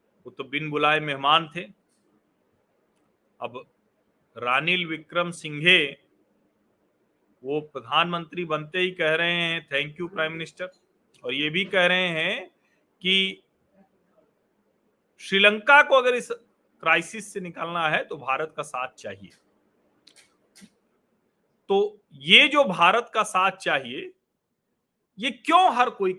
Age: 40-59